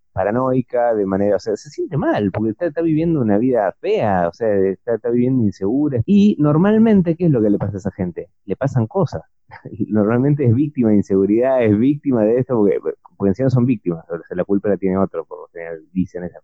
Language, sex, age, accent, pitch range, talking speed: Spanish, male, 30-49, Argentinian, 100-140 Hz, 220 wpm